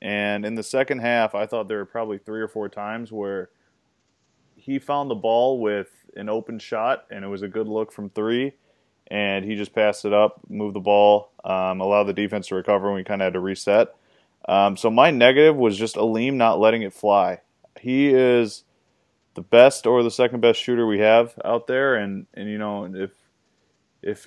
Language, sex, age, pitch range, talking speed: English, male, 20-39, 100-110 Hz, 205 wpm